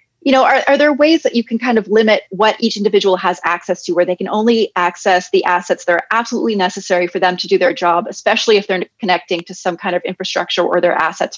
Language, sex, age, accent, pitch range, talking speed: English, female, 30-49, American, 180-225 Hz, 250 wpm